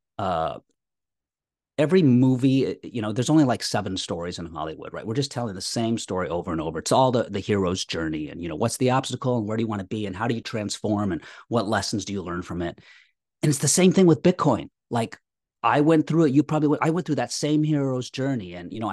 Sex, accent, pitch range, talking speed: male, American, 100-135 Hz, 250 wpm